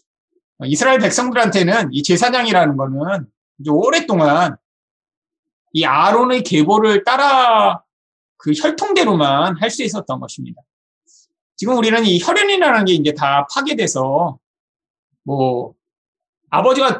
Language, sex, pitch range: Korean, male, 175-290 Hz